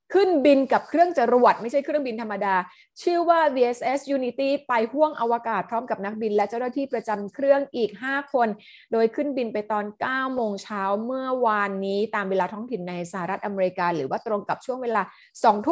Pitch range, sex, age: 185-235 Hz, female, 20-39